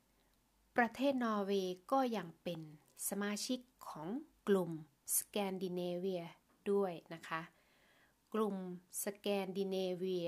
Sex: female